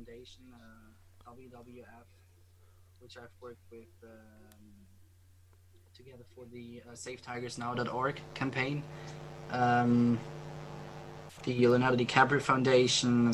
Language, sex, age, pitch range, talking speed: English, male, 20-39, 105-125 Hz, 85 wpm